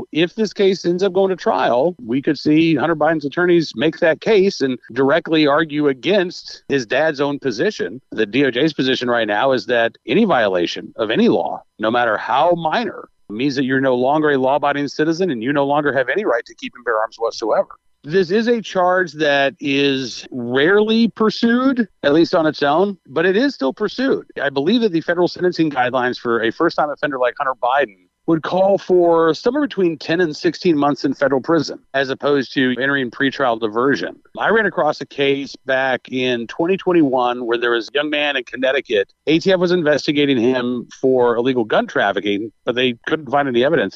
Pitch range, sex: 130-175 Hz, male